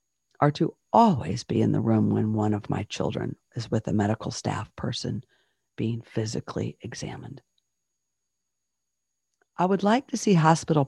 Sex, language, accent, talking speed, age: female, English, American, 150 wpm, 50-69